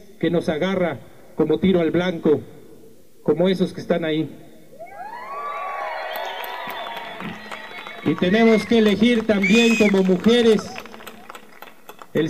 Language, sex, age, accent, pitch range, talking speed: Spanish, male, 50-69, Mexican, 180-215 Hz, 100 wpm